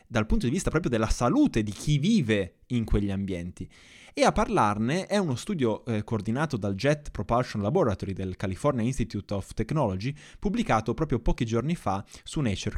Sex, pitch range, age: male, 105-150 Hz, 20-39